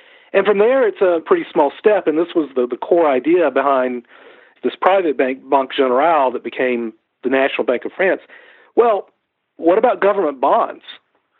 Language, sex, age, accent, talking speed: English, male, 50-69, American, 175 wpm